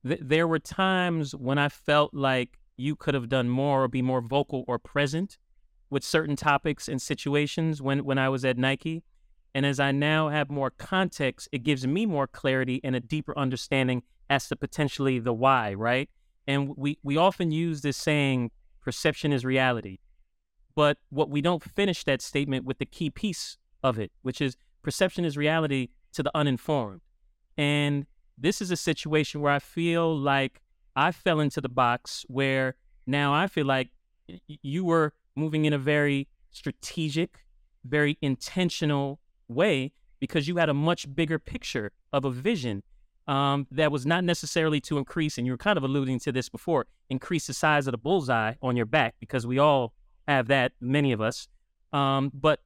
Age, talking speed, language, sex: 30-49, 180 wpm, English, male